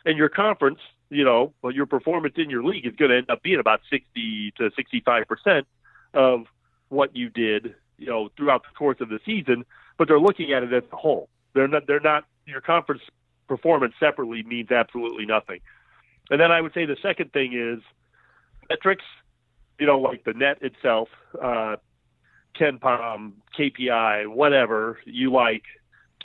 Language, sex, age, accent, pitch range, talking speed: English, male, 40-59, American, 120-150 Hz, 175 wpm